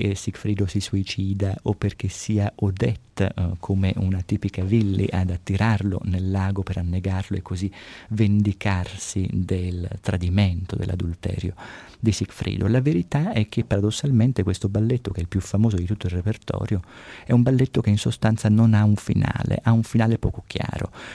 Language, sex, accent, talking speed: Italian, male, native, 160 wpm